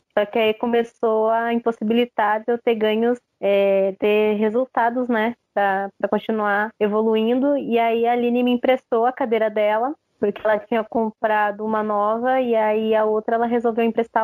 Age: 20-39